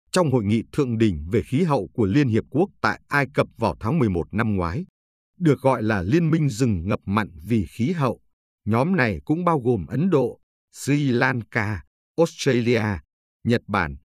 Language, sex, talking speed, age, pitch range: Vietnamese, male, 180 wpm, 60-79, 100-140 Hz